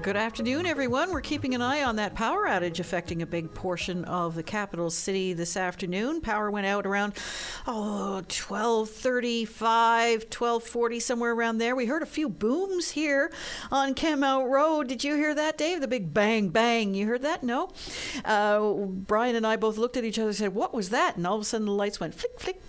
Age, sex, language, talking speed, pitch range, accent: 50-69, female, English, 205 wpm, 185-250 Hz, American